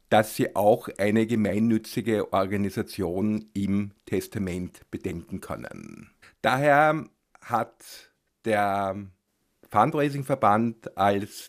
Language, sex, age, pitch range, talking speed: German, male, 50-69, 100-120 Hz, 80 wpm